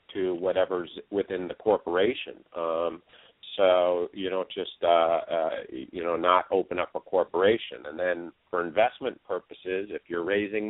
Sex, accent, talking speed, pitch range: male, American, 155 wpm, 90-115 Hz